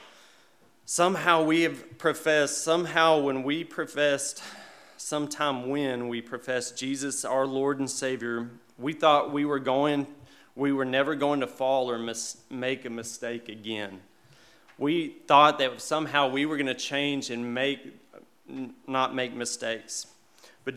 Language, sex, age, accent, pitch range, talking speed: English, male, 30-49, American, 125-150 Hz, 140 wpm